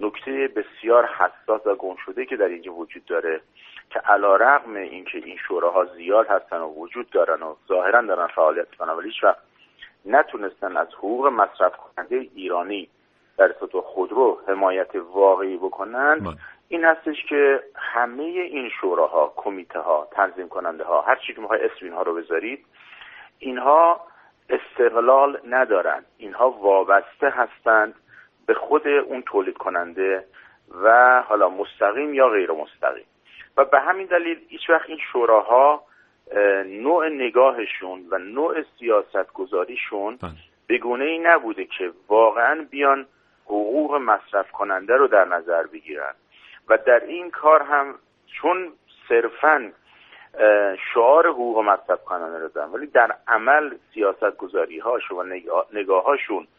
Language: Persian